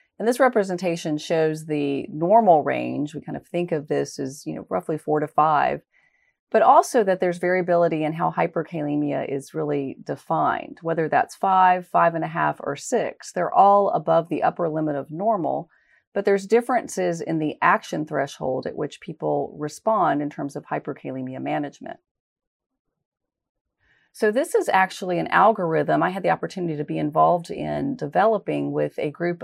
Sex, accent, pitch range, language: female, American, 150-200 Hz, English